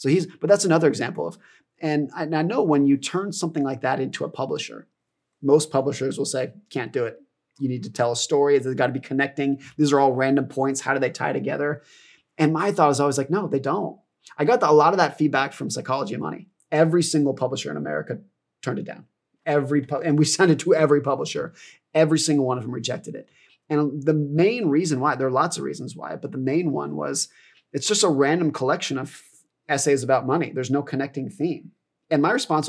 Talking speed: 225 wpm